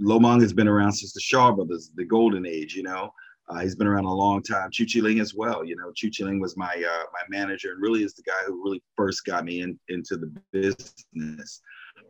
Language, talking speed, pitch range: English, 245 wpm, 90-110 Hz